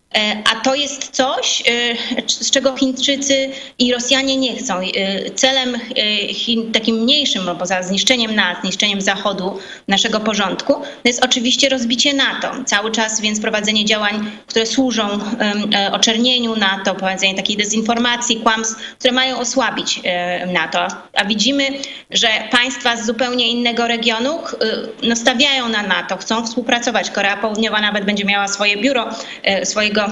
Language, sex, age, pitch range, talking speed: Polish, female, 20-39, 210-245 Hz, 135 wpm